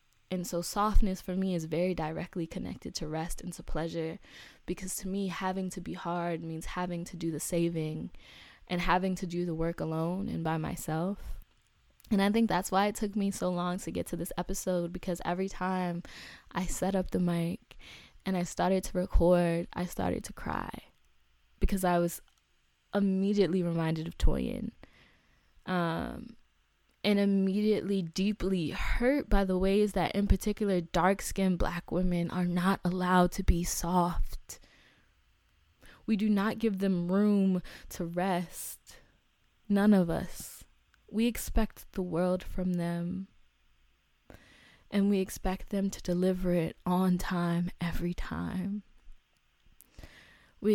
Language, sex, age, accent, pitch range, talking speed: English, female, 20-39, American, 170-195 Hz, 150 wpm